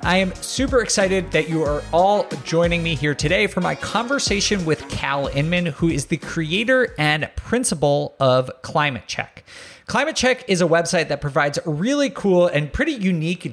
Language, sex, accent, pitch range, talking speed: English, male, American, 135-185 Hz, 175 wpm